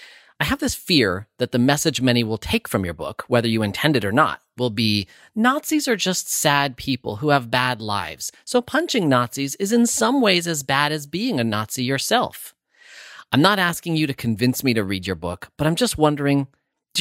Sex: male